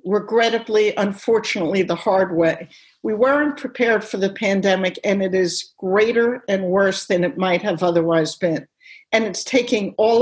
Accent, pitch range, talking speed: American, 180-230 Hz, 160 wpm